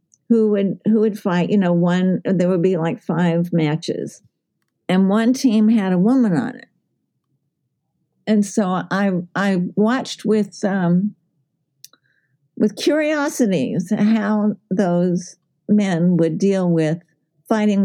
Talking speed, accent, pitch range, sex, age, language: 125 wpm, American, 170-210 Hz, female, 50-69, English